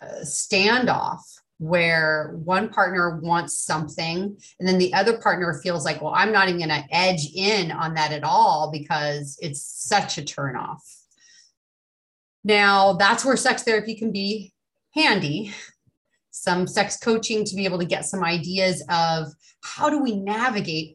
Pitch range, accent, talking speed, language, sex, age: 155-205 Hz, American, 150 wpm, English, female, 30-49